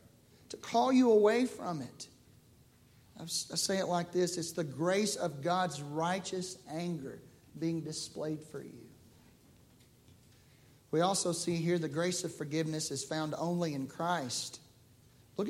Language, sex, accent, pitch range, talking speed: English, male, American, 160-210 Hz, 140 wpm